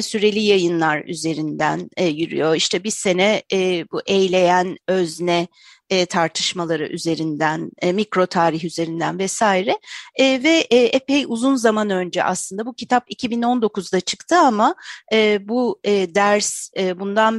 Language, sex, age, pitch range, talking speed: Turkish, female, 40-59, 180-275 Hz, 105 wpm